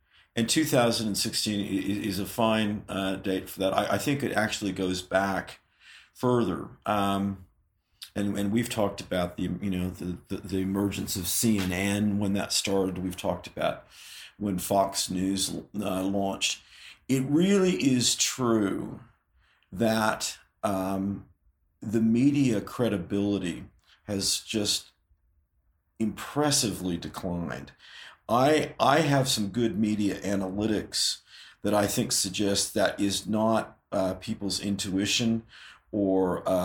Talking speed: 120 wpm